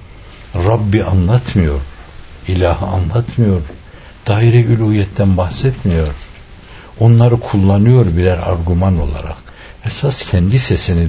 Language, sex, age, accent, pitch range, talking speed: Turkish, male, 60-79, native, 85-115 Hz, 80 wpm